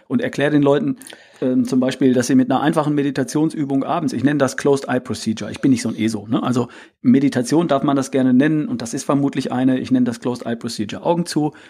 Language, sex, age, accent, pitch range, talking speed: German, male, 40-59, German, 125-160 Hz, 235 wpm